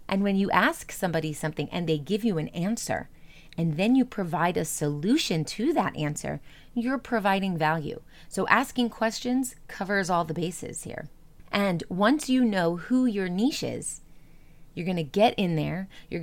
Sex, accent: female, American